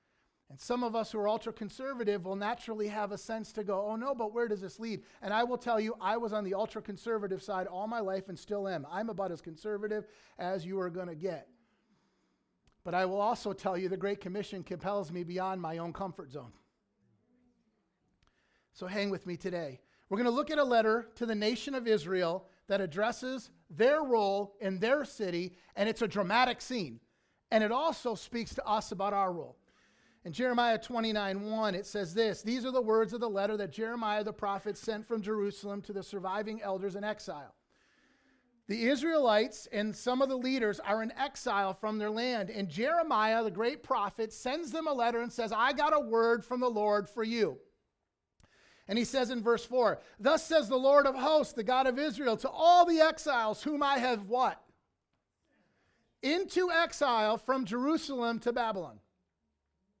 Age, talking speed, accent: 40-59, 190 wpm, American